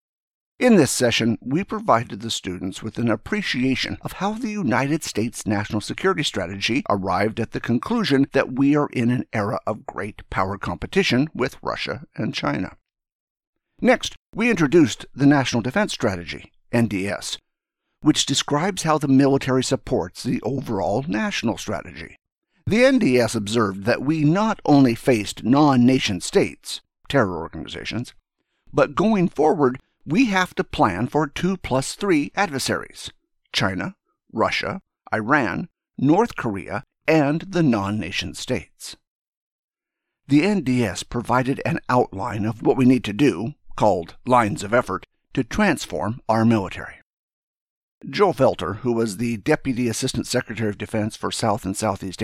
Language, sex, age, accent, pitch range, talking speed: English, male, 50-69, American, 110-150 Hz, 140 wpm